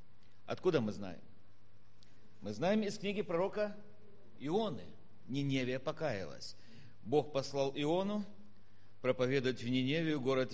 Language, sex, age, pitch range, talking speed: Russian, male, 50-69, 100-150 Hz, 100 wpm